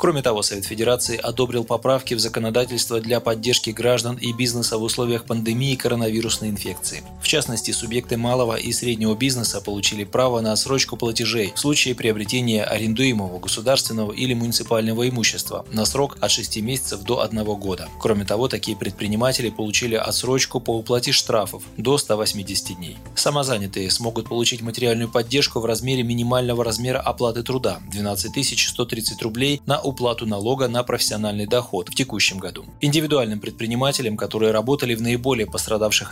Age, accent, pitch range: 20-39, native, 110-125 Hz